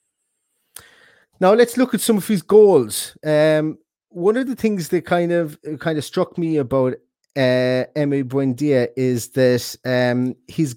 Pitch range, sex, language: 125-155 Hz, male, English